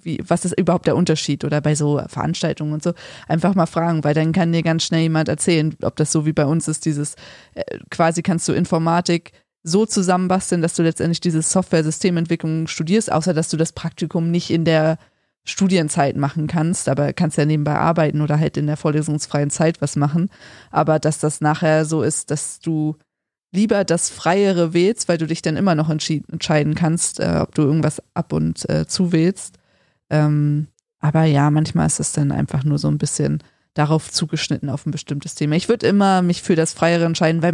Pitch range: 150-175 Hz